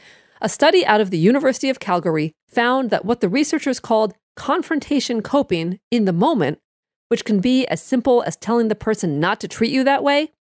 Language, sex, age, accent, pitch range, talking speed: English, female, 40-59, American, 190-265 Hz, 195 wpm